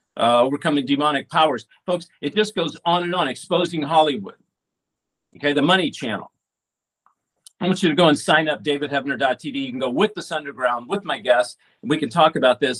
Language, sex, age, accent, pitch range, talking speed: English, male, 50-69, American, 155-215 Hz, 190 wpm